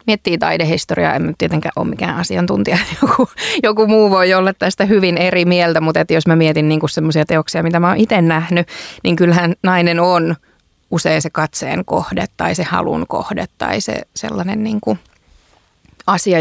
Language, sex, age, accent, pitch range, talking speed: Finnish, female, 20-39, native, 160-185 Hz, 160 wpm